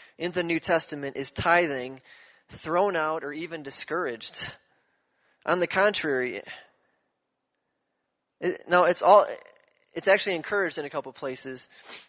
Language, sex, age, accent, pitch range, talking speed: English, male, 20-39, American, 150-215 Hz, 130 wpm